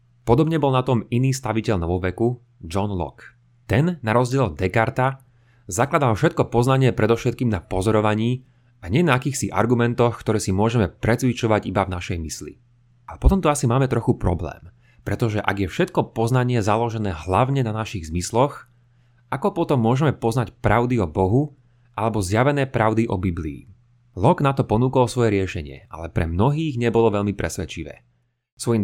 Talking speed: 155 wpm